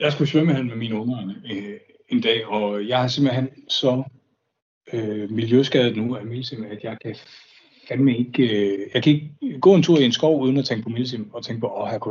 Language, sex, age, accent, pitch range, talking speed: Danish, male, 60-79, native, 110-145 Hz, 215 wpm